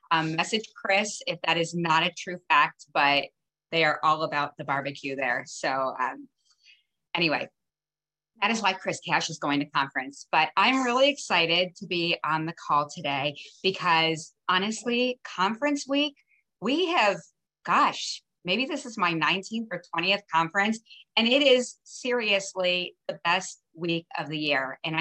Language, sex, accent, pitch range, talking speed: English, female, American, 160-220 Hz, 160 wpm